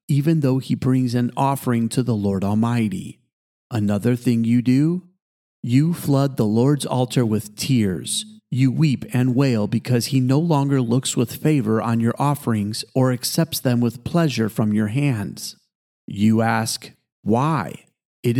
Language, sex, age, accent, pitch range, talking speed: English, male, 40-59, American, 115-140 Hz, 155 wpm